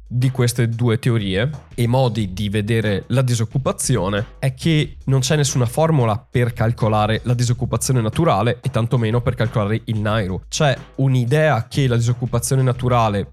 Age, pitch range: 20-39, 110-135 Hz